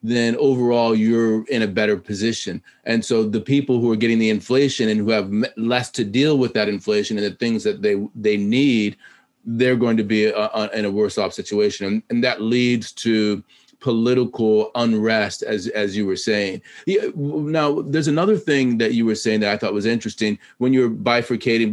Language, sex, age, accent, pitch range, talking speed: English, male, 30-49, American, 105-125 Hz, 190 wpm